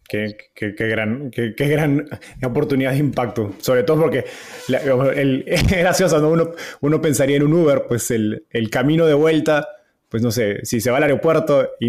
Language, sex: Spanish, male